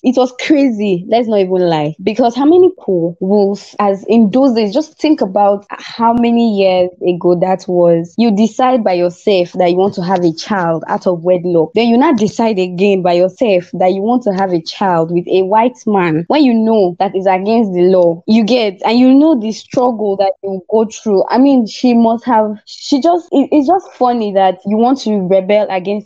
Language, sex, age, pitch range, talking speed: English, female, 20-39, 180-230 Hz, 210 wpm